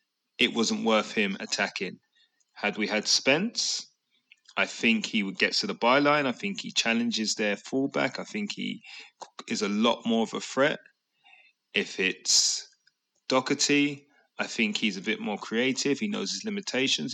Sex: male